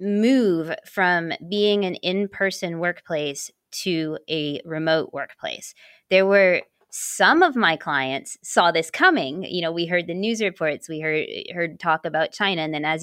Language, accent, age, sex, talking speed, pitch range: English, American, 20-39, female, 160 wpm, 155-200 Hz